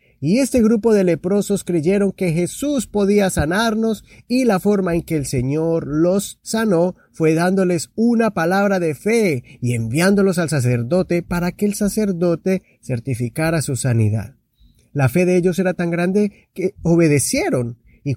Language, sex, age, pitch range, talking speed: Spanish, male, 30-49, 130-195 Hz, 150 wpm